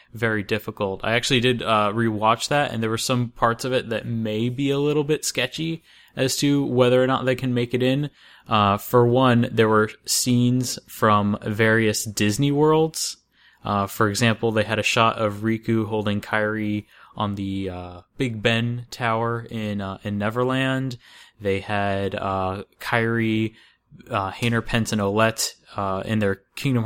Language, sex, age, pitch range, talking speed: English, male, 20-39, 105-125 Hz, 170 wpm